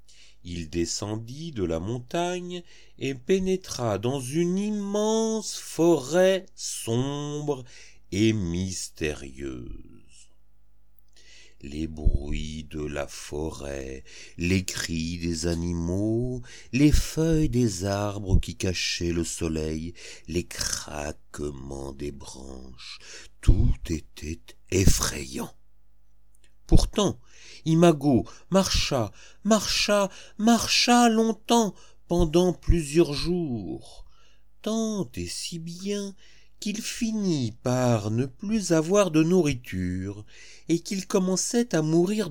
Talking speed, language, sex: 90 wpm, French, male